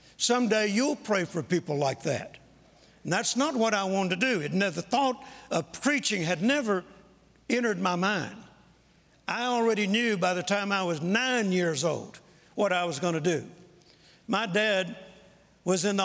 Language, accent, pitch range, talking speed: English, American, 180-220 Hz, 170 wpm